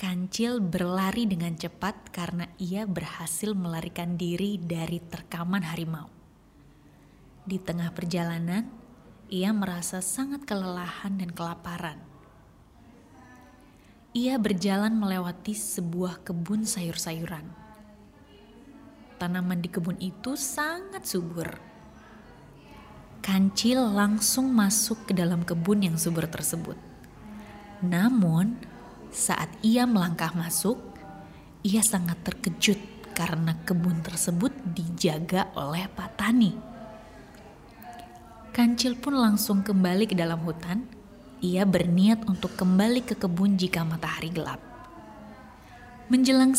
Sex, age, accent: female, 20-39, Indonesian